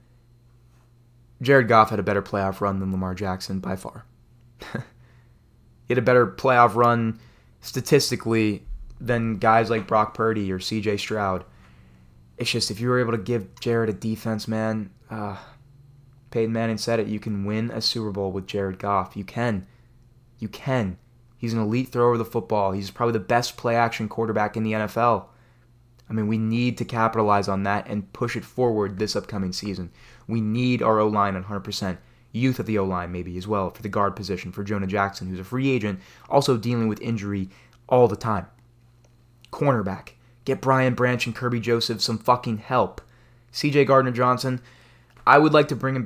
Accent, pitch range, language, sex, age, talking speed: American, 105-120 Hz, English, male, 20-39, 180 wpm